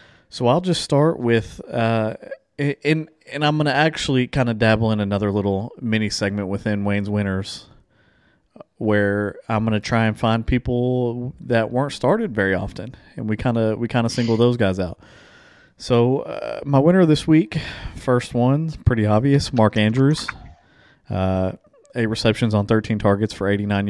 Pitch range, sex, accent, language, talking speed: 100-130 Hz, male, American, English, 170 wpm